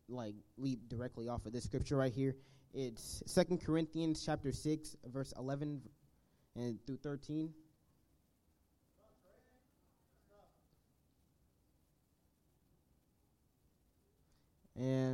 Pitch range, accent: 120-155 Hz, American